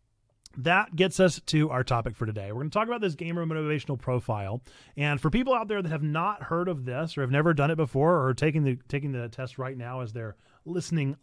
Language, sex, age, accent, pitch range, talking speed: English, male, 30-49, American, 125-170 Hz, 245 wpm